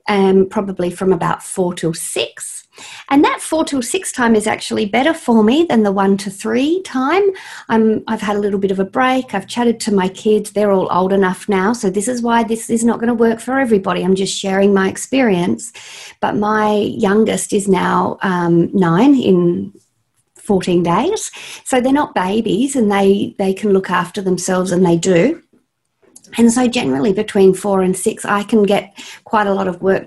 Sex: female